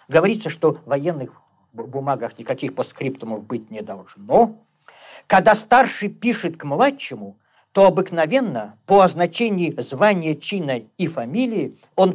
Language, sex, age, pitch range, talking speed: Russian, male, 50-69, 135-195 Hz, 125 wpm